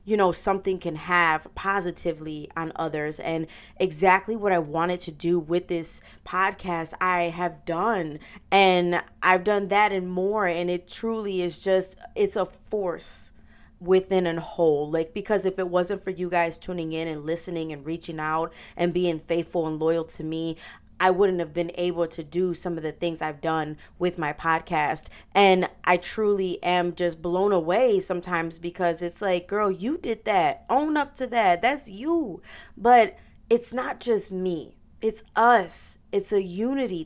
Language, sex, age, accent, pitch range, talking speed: English, female, 20-39, American, 170-205 Hz, 175 wpm